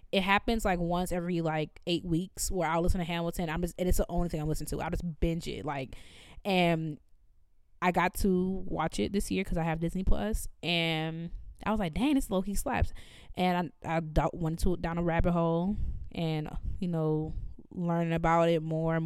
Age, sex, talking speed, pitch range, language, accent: 20-39, female, 215 wpm, 160-185 Hz, English, American